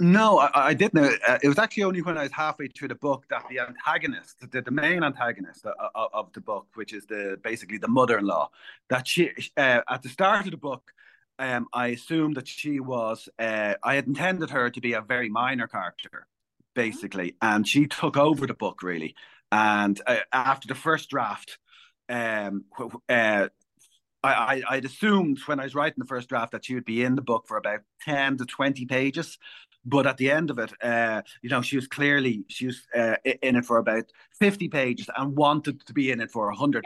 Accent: Irish